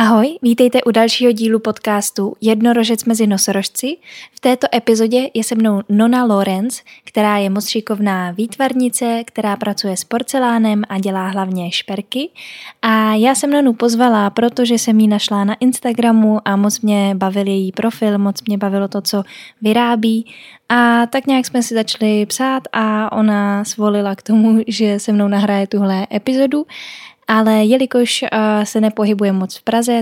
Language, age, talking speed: Czech, 10-29, 155 wpm